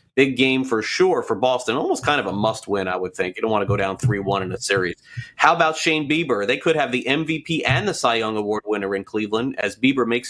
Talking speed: 260 wpm